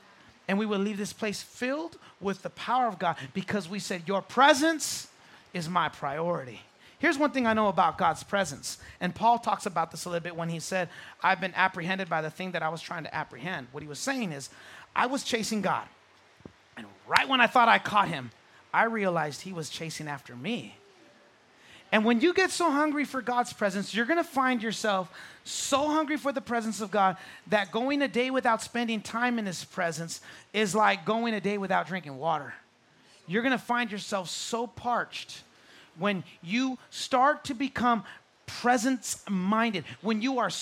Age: 30-49